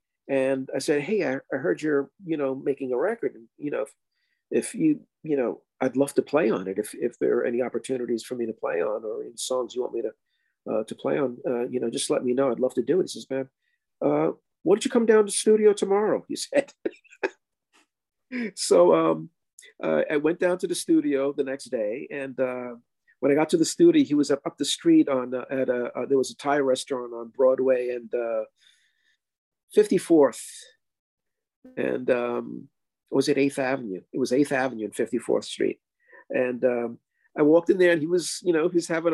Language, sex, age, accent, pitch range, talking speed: English, male, 50-69, American, 130-215 Hz, 220 wpm